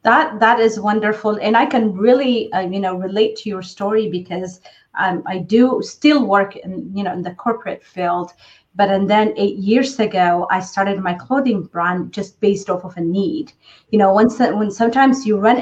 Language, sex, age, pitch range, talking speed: English, female, 30-49, 190-220 Hz, 200 wpm